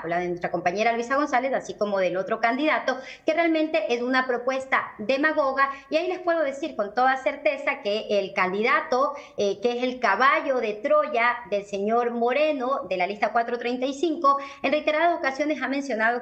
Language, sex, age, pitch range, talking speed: English, male, 40-59, 210-270 Hz, 175 wpm